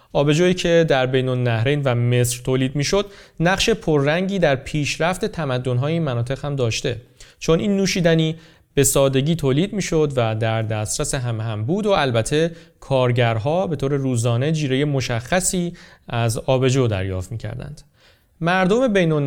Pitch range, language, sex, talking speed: 120-160 Hz, Persian, male, 140 wpm